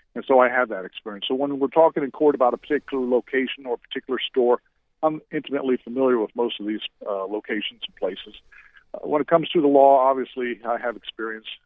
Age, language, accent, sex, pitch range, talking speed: 50-69, English, American, male, 115-140 Hz, 215 wpm